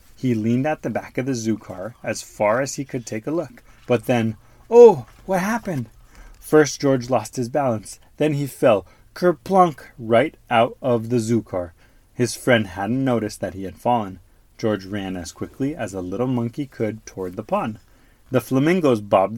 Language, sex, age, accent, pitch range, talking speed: English, male, 30-49, American, 105-140 Hz, 185 wpm